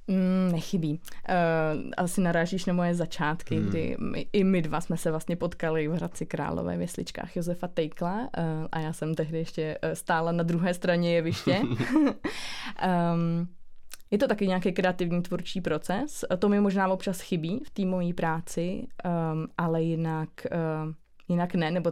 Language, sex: Czech, female